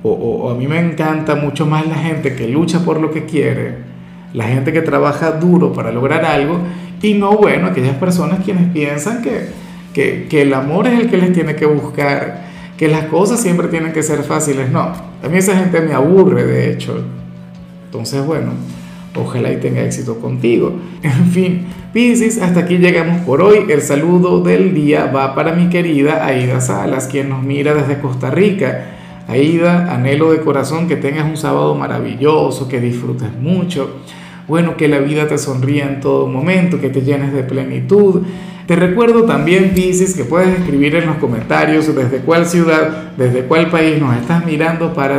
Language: Spanish